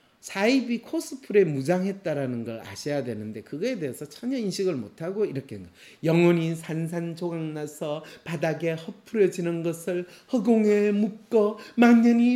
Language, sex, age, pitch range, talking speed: English, male, 40-59, 160-245 Hz, 100 wpm